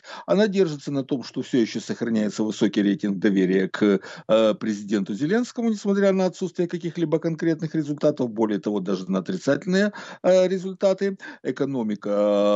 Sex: male